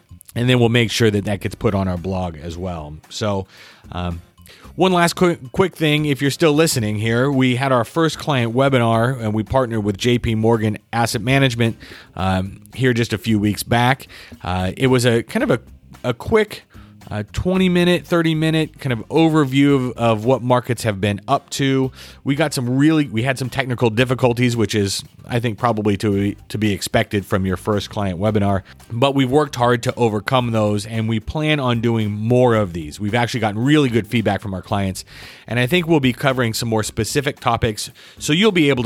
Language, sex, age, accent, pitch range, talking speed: English, male, 30-49, American, 100-125 Hz, 205 wpm